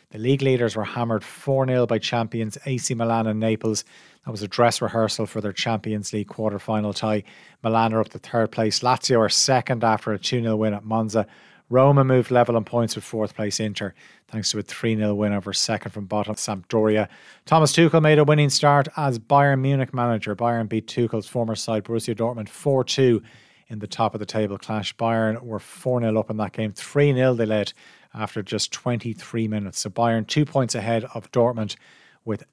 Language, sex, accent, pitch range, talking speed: English, male, Irish, 110-130 Hz, 190 wpm